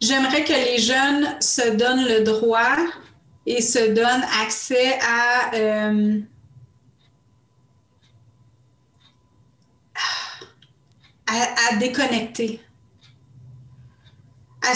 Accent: Canadian